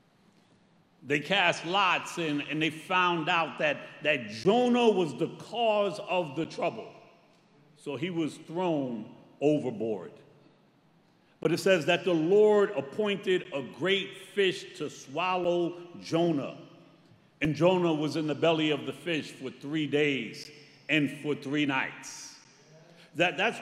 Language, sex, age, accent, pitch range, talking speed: English, male, 50-69, American, 150-180 Hz, 130 wpm